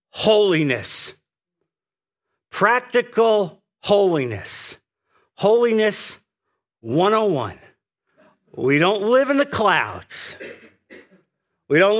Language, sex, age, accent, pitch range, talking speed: English, male, 50-69, American, 130-200 Hz, 65 wpm